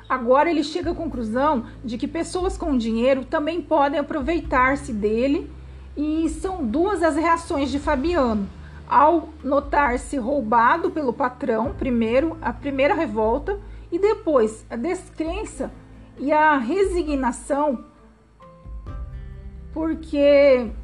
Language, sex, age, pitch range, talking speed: Portuguese, female, 40-59, 255-330 Hz, 110 wpm